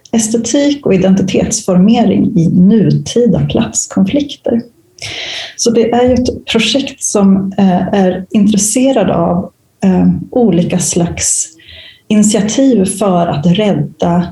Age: 30-49